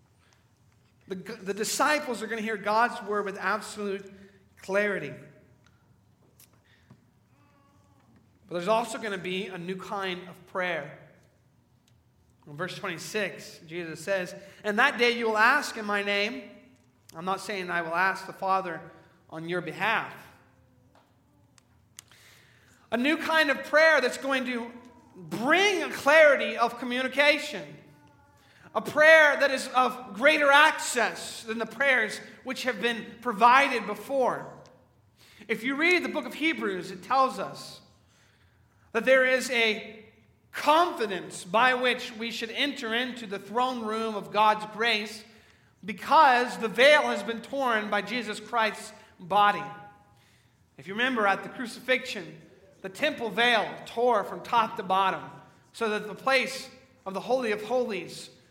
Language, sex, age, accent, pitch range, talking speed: English, male, 40-59, American, 180-245 Hz, 140 wpm